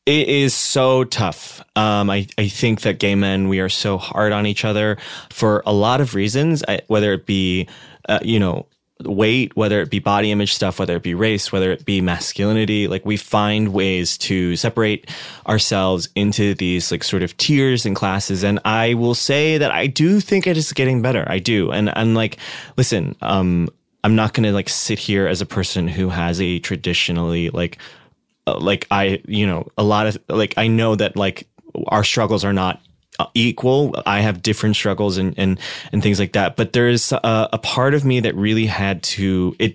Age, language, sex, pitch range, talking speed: 20-39, English, male, 95-115 Hz, 200 wpm